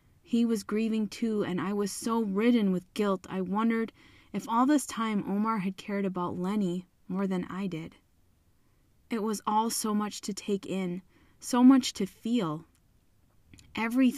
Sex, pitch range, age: female, 175-220 Hz, 20-39